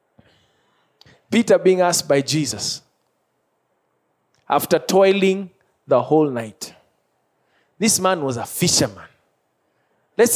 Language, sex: English, male